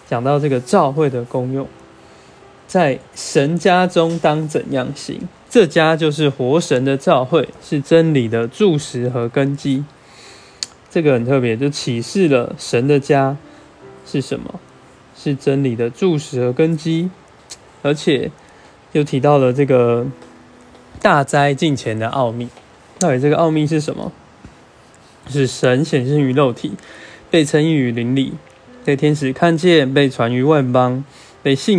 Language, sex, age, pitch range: Chinese, male, 20-39, 125-155 Hz